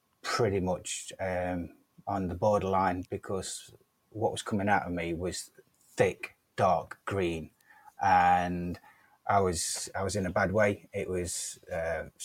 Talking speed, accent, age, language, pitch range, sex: 140 wpm, British, 30-49, English, 100-115 Hz, male